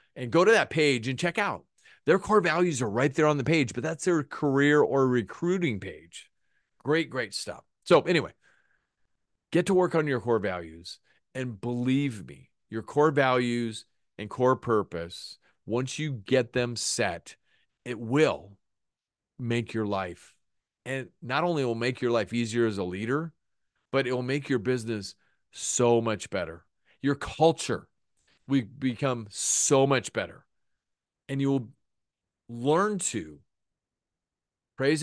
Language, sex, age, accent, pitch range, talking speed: English, male, 40-59, American, 110-140 Hz, 150 wpm